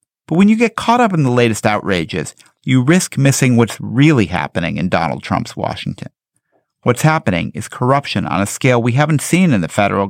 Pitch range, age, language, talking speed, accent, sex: 105-140 Hz, 50-69, English, 195 wpm, American, male